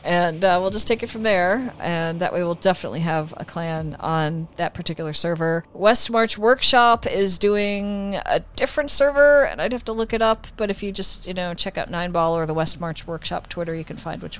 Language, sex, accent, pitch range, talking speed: English, female, American, 160-195 Hz, 215 wpm